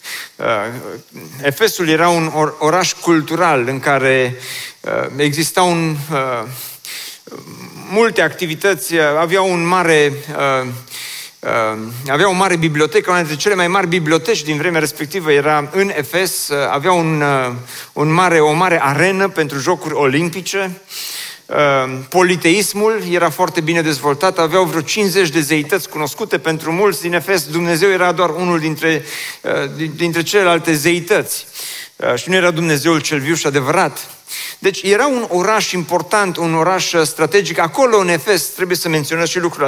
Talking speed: 140 wpm